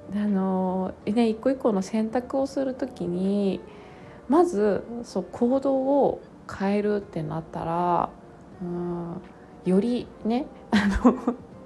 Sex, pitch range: female, 180-240 Hz